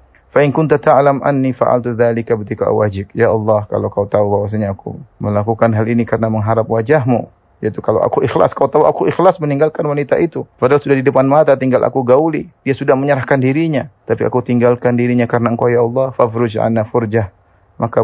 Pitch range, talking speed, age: 105-125 Hz, 185 wpm, 30-49